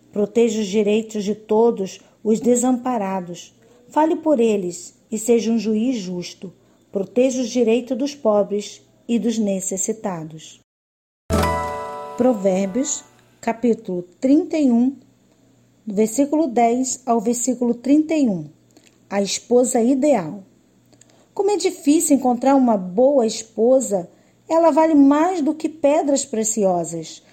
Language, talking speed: Portuguese, 105 wpm